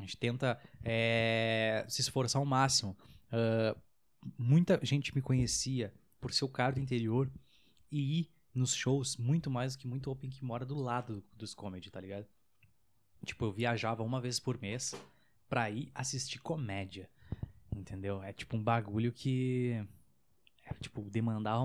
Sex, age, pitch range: male, 20-39, 105-130 Hz